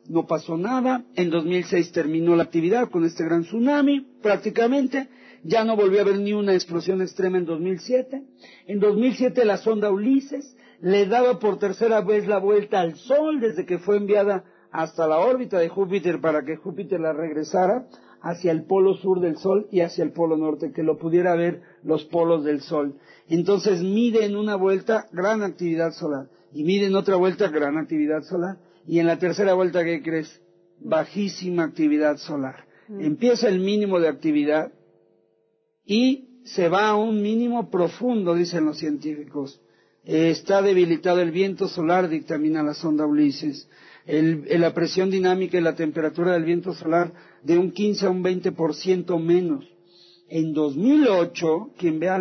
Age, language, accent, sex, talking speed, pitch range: 50-69, Spanish, Mexican, male, 165 wpm, 160-200 Hz